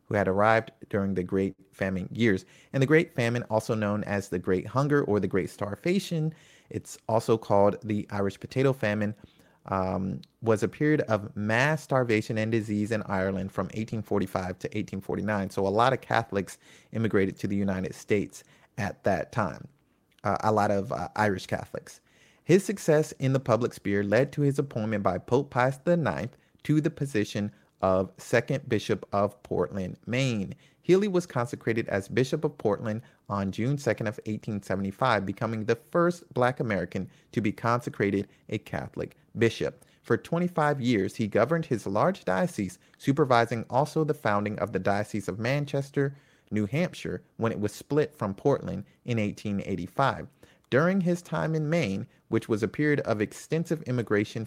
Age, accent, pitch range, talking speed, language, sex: 30-49, American, 100-140 Hz, 165 wpm, English, male